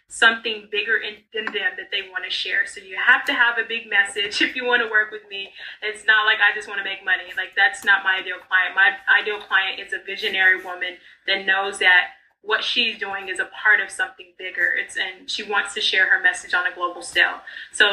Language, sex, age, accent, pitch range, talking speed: English, female, 20-39, American, 195-245 Hz, 240 wpm